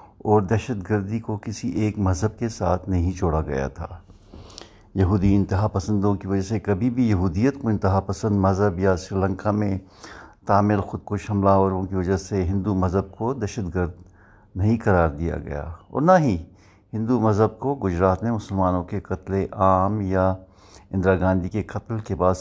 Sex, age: male, 60-79